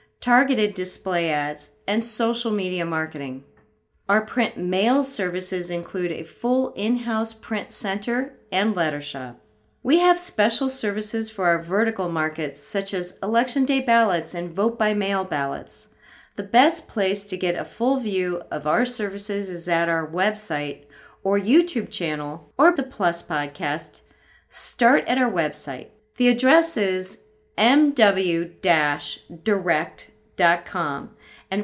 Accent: American